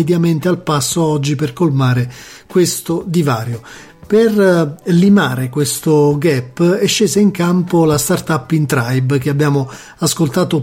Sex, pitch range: male, 145-180 Hz